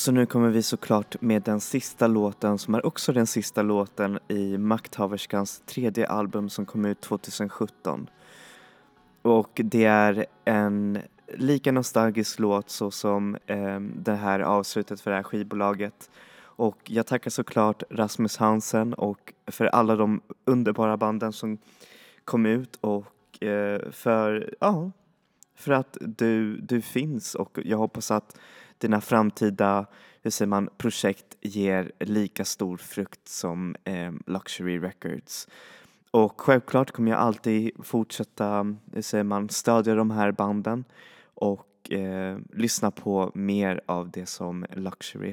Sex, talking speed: male, 135 wpm